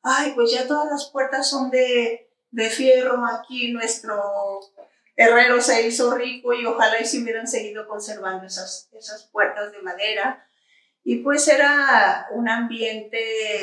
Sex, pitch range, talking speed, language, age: female, 210-245 Hz, 150 wpm, Spanish, 40-59